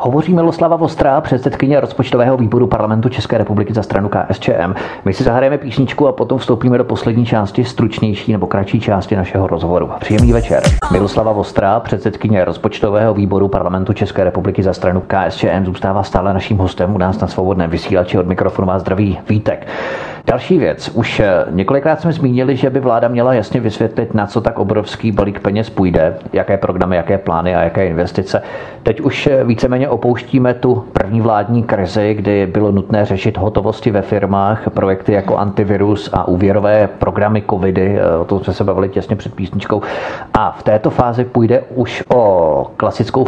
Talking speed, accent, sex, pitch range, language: 165 wpm, native, male, 95-115 Hz, Czech